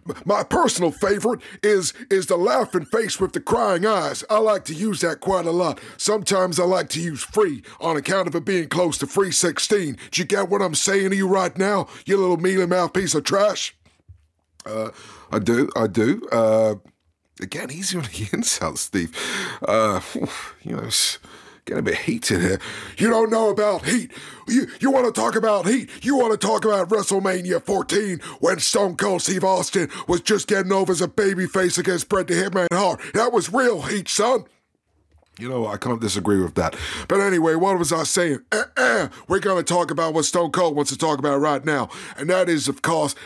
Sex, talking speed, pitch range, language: male, 205 wpm, 150-200 Hz, English